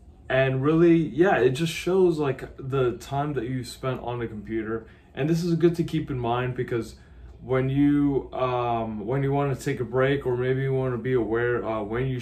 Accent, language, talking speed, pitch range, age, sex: American, English, 215 wpm, 110-130 Hz, 20-39, male